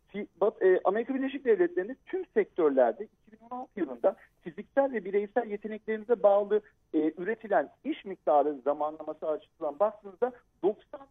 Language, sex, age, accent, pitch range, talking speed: Turkish, male, 50-69, native, 175-255 Hz, 110 wpm